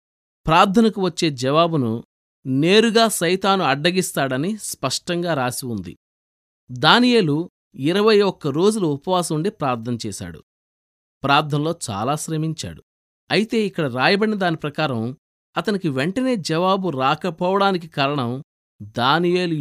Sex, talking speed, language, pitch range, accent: male, 85 wpm, Telugu, 125-185 Hz, native